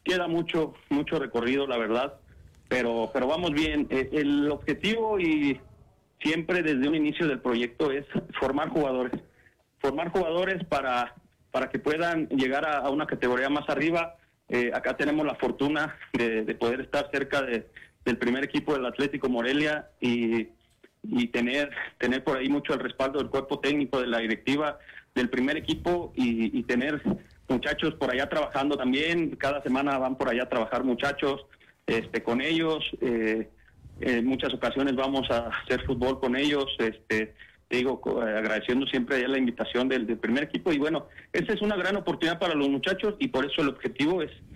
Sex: male